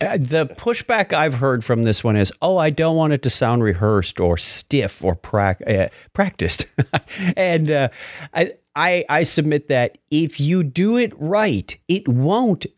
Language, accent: English, American